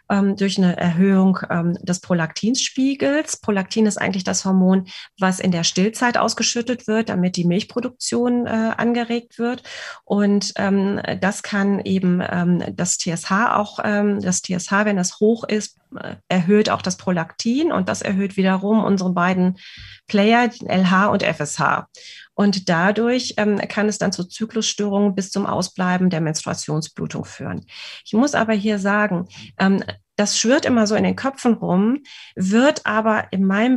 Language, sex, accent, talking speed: German, female, German, 140 wpm